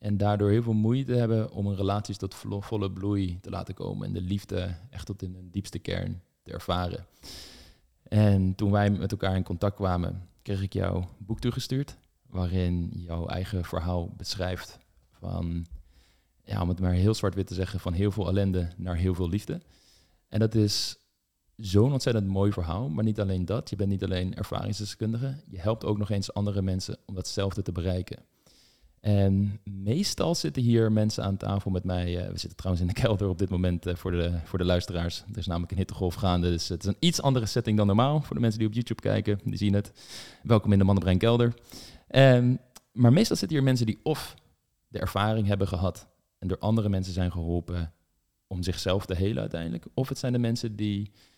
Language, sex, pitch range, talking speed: Dutch, male, 90-110 Hz, 195 wpm